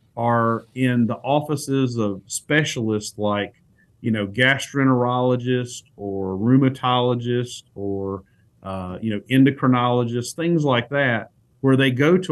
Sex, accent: male, American